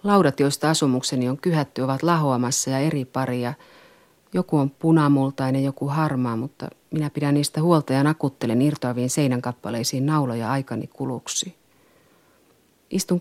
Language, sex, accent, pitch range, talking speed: Finnish, female, native, 130-155 Hz, 125 wpm